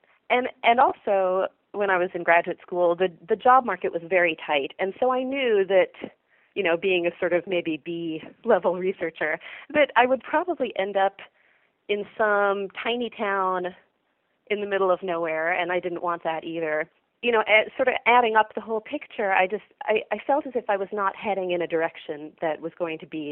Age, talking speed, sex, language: 30-49, 205 wpm, female, English